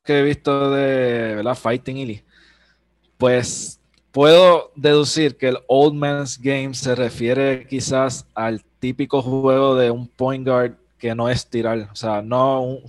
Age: 20-39